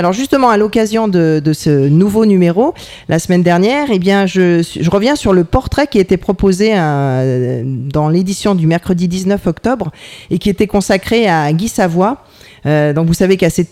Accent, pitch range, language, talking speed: French, 160-200 Hz, French, 185 wpm